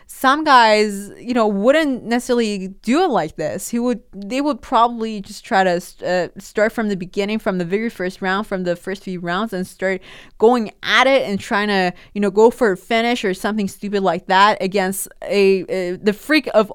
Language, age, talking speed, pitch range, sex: English, 20-39, 210 wpm, 195-245 Hz, female